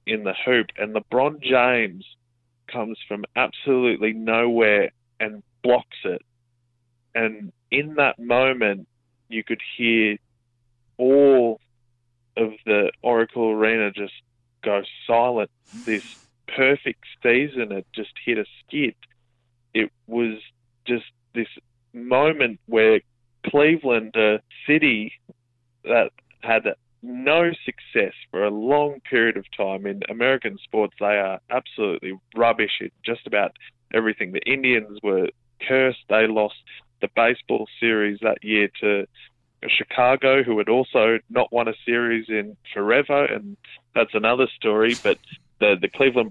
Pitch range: 110-125 Hz